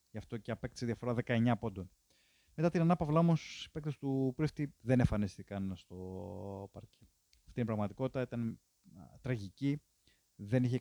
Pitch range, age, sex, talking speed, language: 105-130 Hz, 30-49, male, 145 wpm, Greek